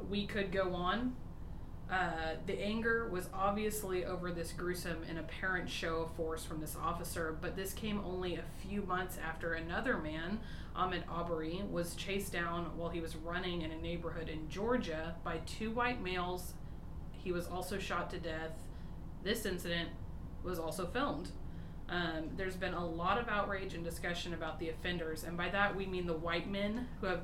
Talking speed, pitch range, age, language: 180 wpm, 165-190 Hz, 20-39, English